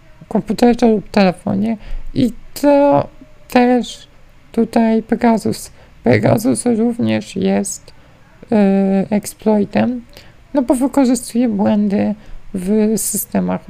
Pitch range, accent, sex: 190-240 Hz, native, male